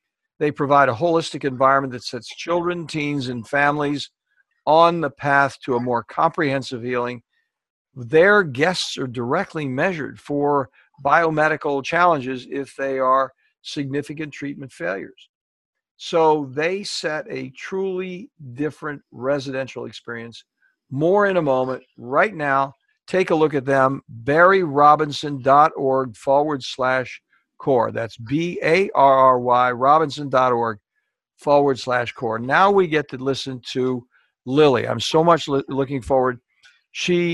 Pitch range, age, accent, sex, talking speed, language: 130-165 Hz, 60-79, American, male, 120 wpm, English